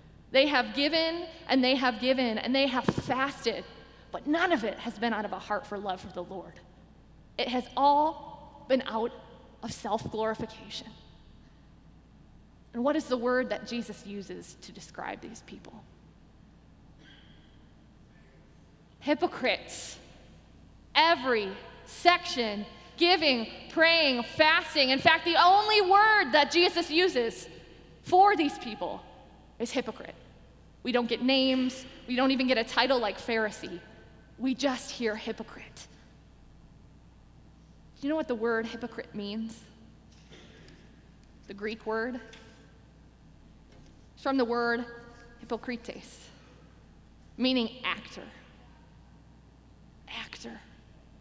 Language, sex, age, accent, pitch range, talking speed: English, female, 20-39, American, 225-305 Hz, 115 wpm